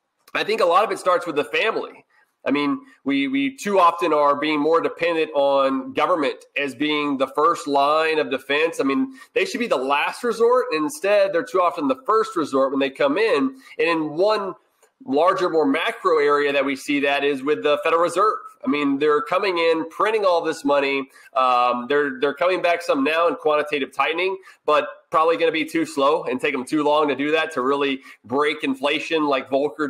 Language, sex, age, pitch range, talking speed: English, male, 30-49, 145-205 Hz, 210 wpm